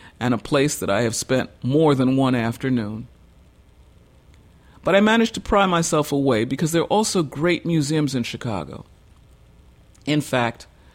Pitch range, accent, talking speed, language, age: 120-145 Hz, American, 155 wpm, English, 50-69